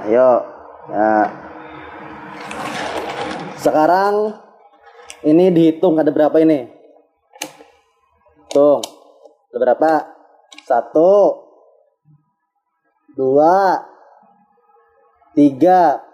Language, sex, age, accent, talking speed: Indonesian, male, 20-39, native, 50 wpm